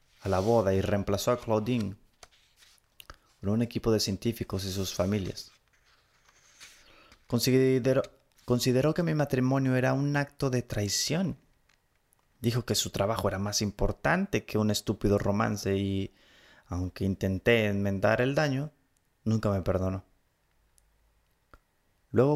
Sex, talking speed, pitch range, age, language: male, 125 wpm, 95-120 Hz, 30-49, Spanish